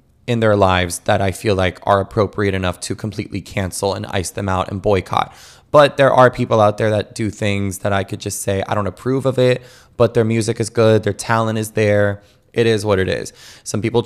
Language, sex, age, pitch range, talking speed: English, male, 20-39, 105-120 Hz, 230 wpm